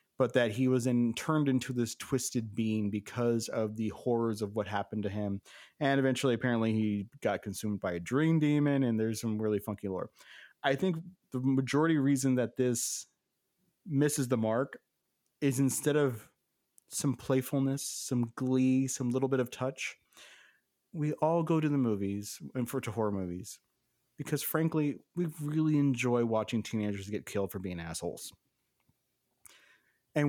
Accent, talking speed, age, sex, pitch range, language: American, 160 wpm, 30-49, male, 115-150 Hz, English